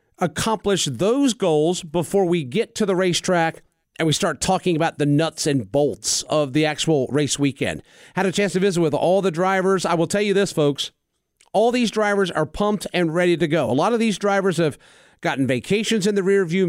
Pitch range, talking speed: 155-195 Hz, 210 wpm